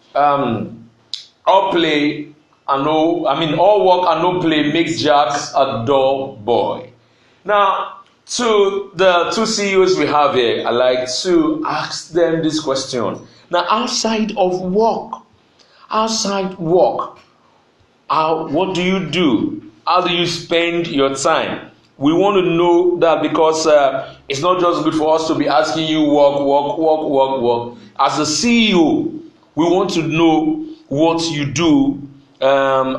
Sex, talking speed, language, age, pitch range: male, 150 wpm, English, 50-69, 135-175 Hz